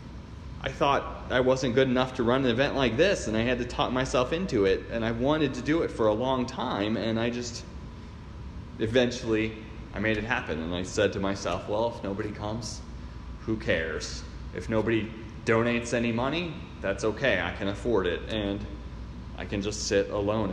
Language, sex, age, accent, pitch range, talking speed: English, male, 30-49, American, 100-120 Hz, 195 wpm